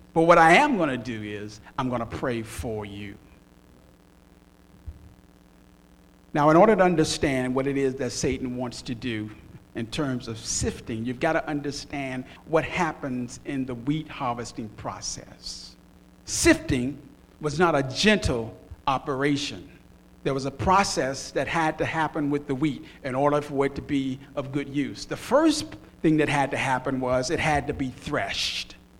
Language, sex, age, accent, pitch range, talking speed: English, male, 50-69, American, 130-210 Hz, 170 wpm